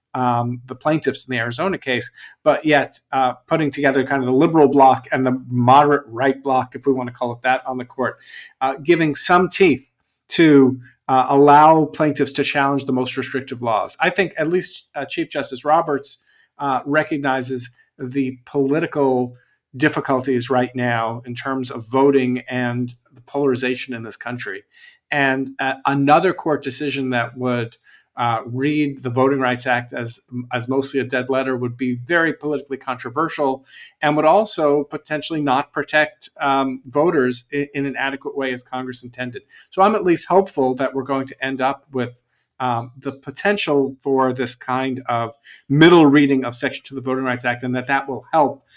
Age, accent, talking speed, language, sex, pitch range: 50-69, American, 175 wpm, English, male, 125-145 Hz